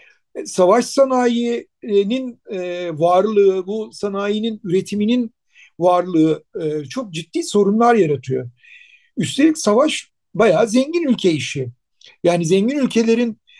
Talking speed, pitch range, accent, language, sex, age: 95 wpm, 175-250 Hz, native, Turkish, male, 60-79